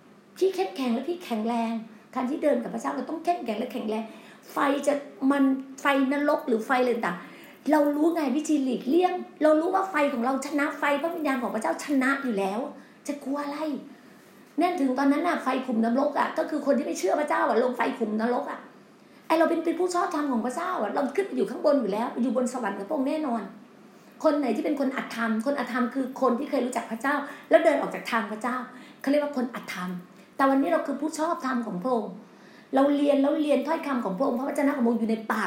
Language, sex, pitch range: Thai, female, 230-290 Hz